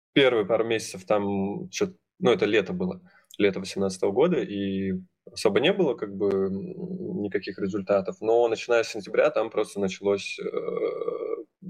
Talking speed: 135 wpm